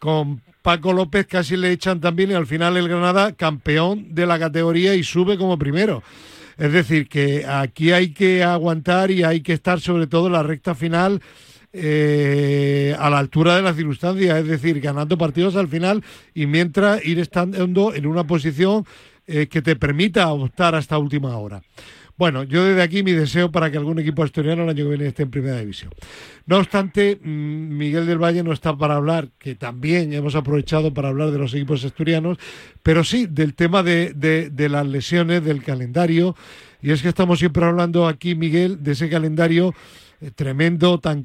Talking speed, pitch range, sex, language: 185 wpm, 150-175 Hz, male, Spanish